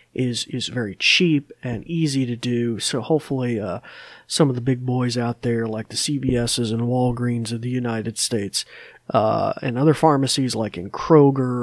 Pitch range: 120-165 Hz